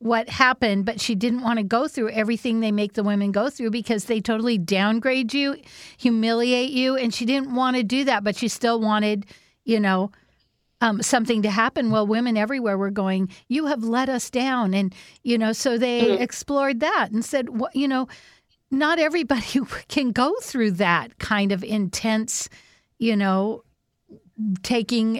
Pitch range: 205-240 Hz